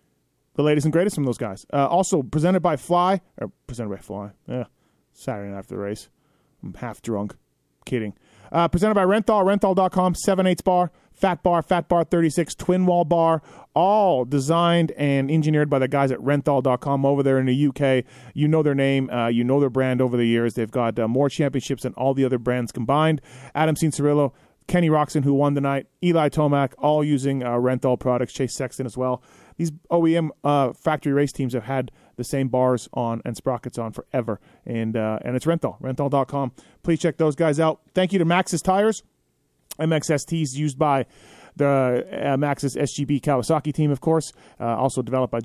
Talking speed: 190 wpm